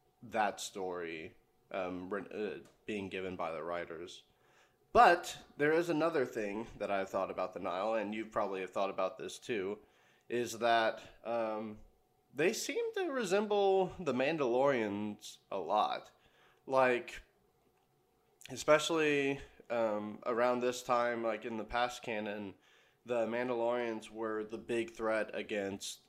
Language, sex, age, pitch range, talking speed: English, male, 20-39, 105-135 Hz, 130 wpm